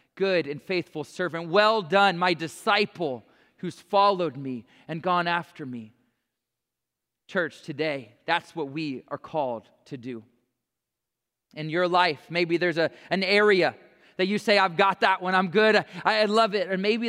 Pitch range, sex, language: 145-205 Hz, male, English